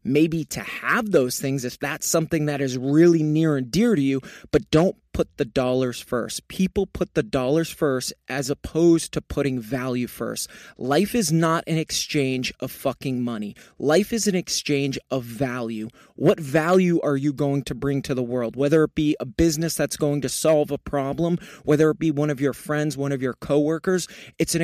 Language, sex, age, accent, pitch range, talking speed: English, male, 20-39, American, 135-165 Hz, 195 wpm